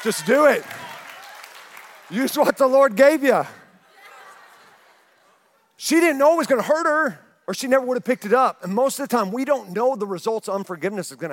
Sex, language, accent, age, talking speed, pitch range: male, English, American, 40-59, 210 wpm, 185-250 Hz